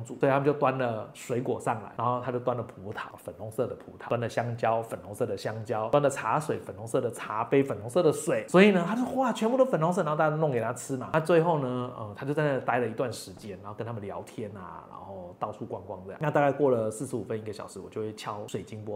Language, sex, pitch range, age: Chinese, male, 115-155 Hz, 20-39